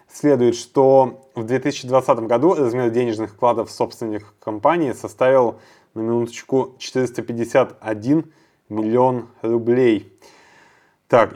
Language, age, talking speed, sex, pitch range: Russian, 20-39, 90 wpm, male, 115-140 Hz